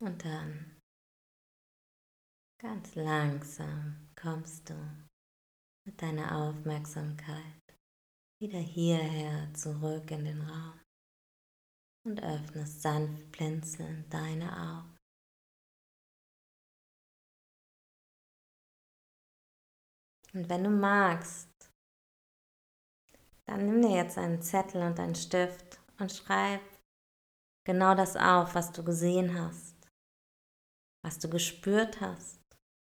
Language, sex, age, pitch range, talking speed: German, female, 20-39, 155-195 Hz, 85 wpm